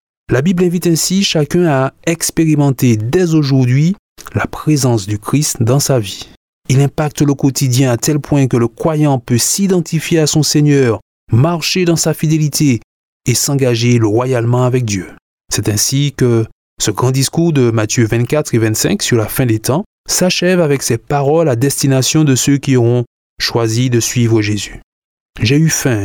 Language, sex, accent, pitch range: French, male, French, 120-155 Hz